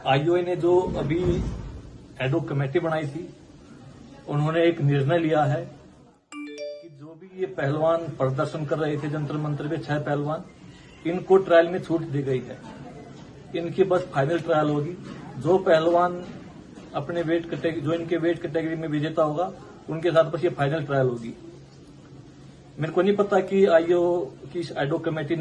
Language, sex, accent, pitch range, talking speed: Hindi, male, native, 150-170 Hz, 160 wpm